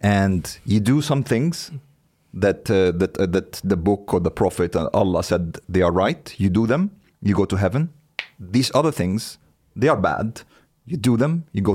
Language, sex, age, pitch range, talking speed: Swedish, male, 30-49, 90-120 Hz, 195 wpm